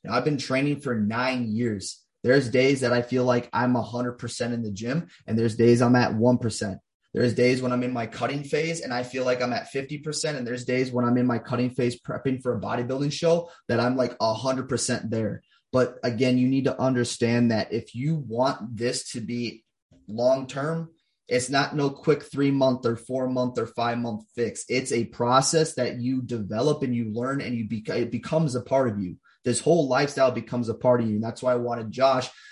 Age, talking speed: 20-39, 205 wpm